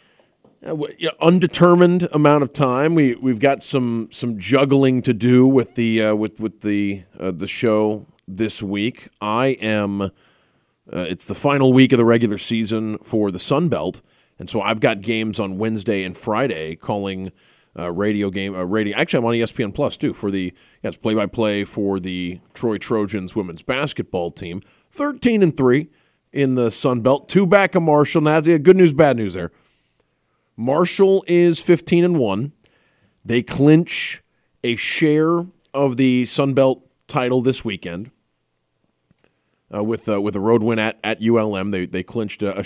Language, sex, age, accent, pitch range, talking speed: English, male, 30-49, American, 105-145 Hz, 165 wpm